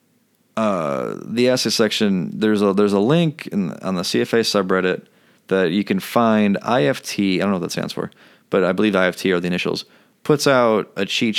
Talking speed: 195 wpm